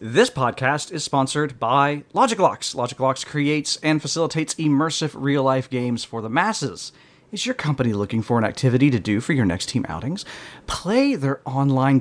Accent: American